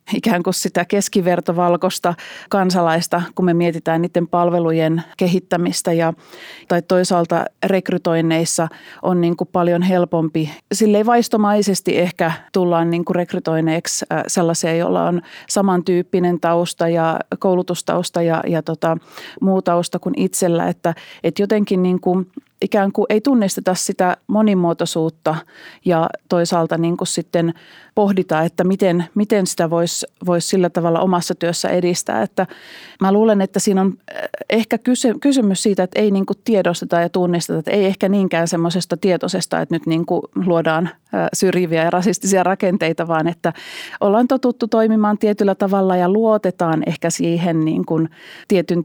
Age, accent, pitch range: 30-49, native, 170-195 Hz